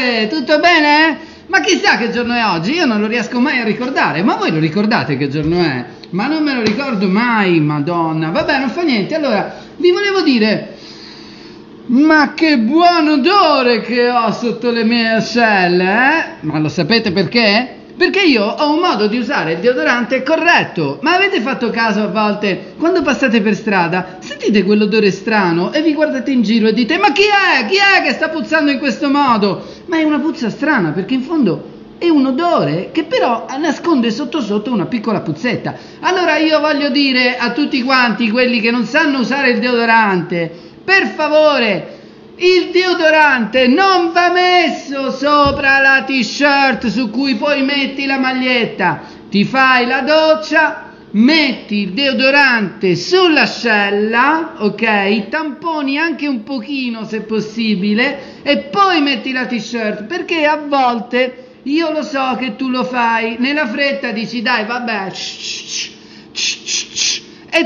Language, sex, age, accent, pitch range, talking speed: Italian, male, 30-49, native, 220-305 Hz, 155 wpm